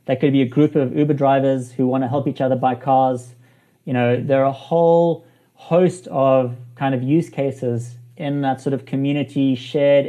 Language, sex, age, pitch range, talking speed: English, male, 30-49, 125-150 Hz, 200 wpm